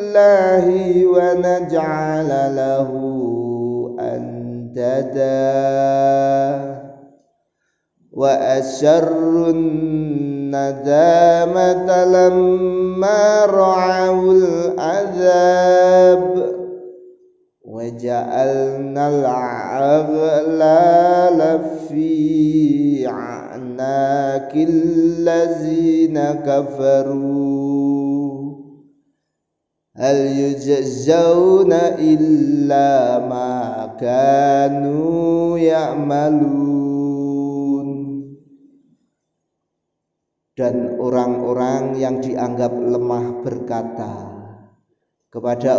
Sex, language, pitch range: male, Indonesian, 135-165 Hz